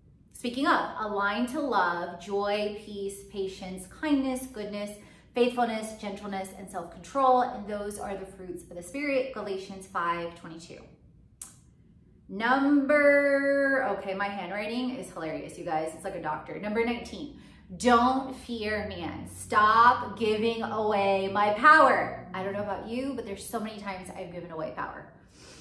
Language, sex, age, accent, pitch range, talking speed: English, female, 30-49, American, 190-250 Hz, 145 wpm